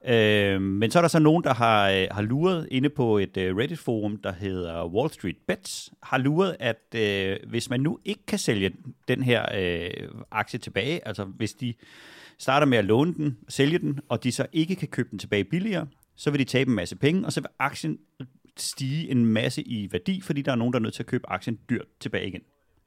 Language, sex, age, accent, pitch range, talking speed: Danish, male, 30-49, native, 100-135 Hz, 225 wpm